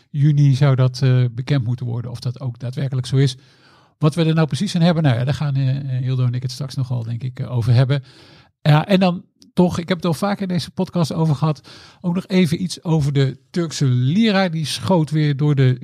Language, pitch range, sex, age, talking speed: Dutch, 130-160 Hz, male, 50-69, 225 wpm